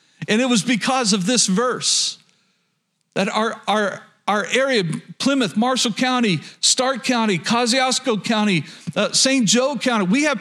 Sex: male